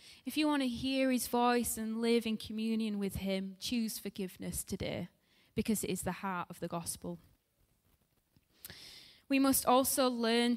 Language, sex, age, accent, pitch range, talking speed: English, female, 10-29, British, 195-240 Hz, 160 wpm